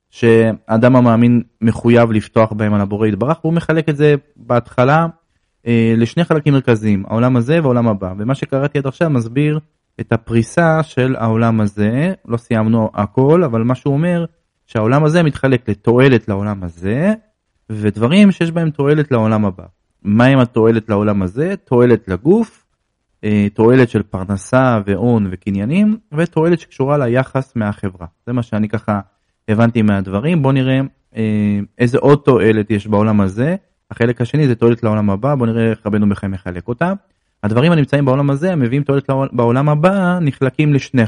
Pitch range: 105-145 Hz